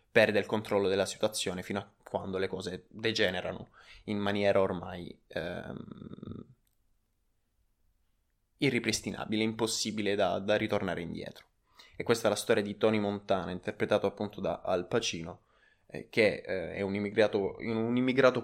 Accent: native